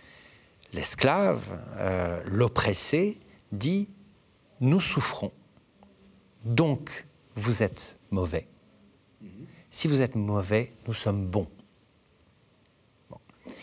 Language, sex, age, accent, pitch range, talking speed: French, male, 50-69, French, 105-130 Hz, 80 wpm